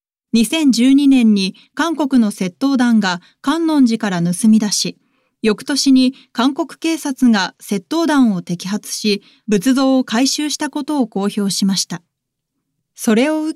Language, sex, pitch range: Japanese, female, 195-270 Hz